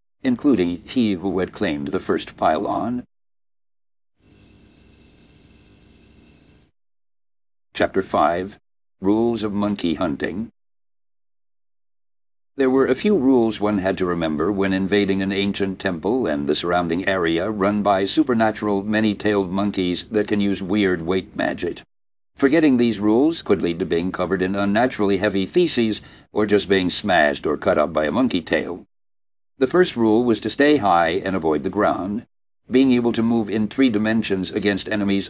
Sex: male